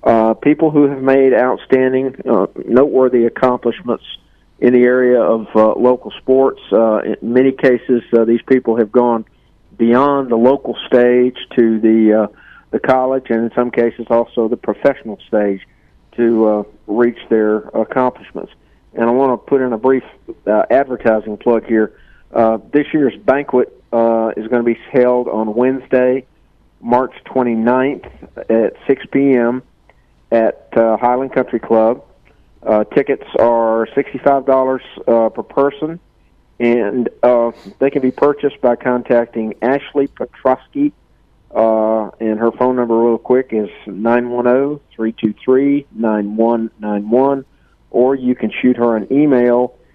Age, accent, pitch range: 50-69, American, 115-130 Hz